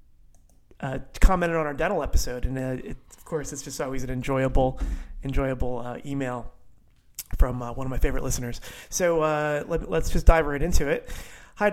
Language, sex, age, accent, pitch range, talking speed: English, male, 30-49, American, 135-160 Hz, 185 wpm